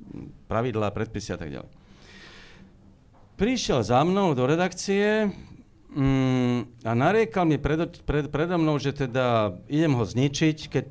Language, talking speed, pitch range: Slovak, 115 wpm, 115-155 Hz